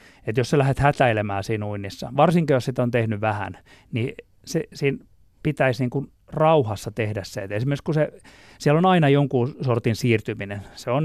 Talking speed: 180 wpm